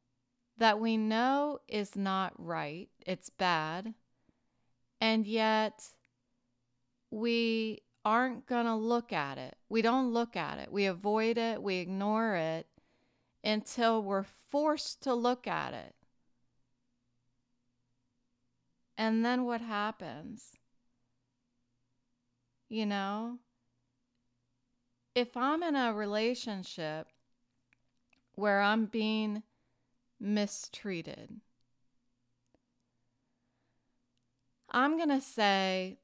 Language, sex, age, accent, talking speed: English, female, 40-59, American, 90 wpm